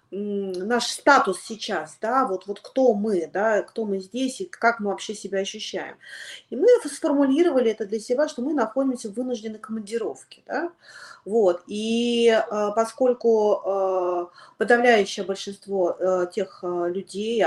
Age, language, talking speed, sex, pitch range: 30-49, Russian, 130 wpm, female, 180-230 Hz